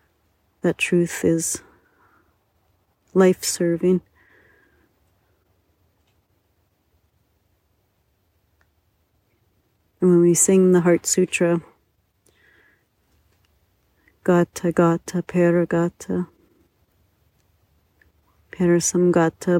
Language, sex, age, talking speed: English, female, 40-59, 45 wpm